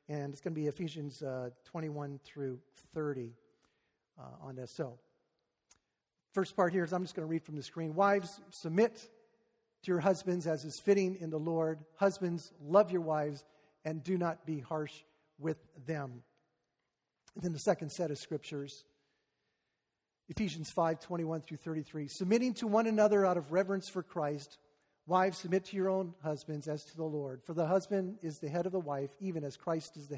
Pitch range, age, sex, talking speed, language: 150-185 Hz, 50-69, male, 185 wpm, English